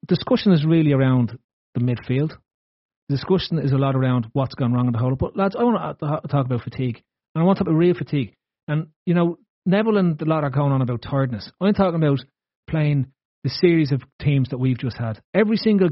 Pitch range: 130-175 Hz